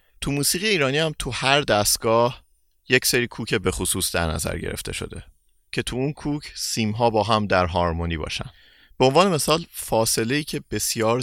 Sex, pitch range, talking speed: male, 85-110 Hz, 175 wpm